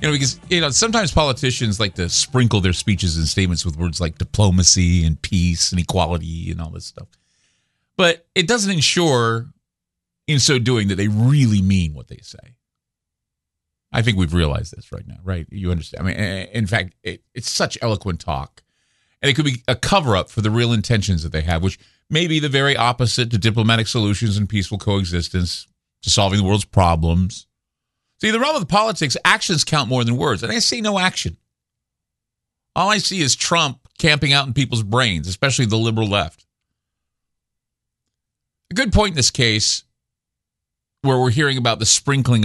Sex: male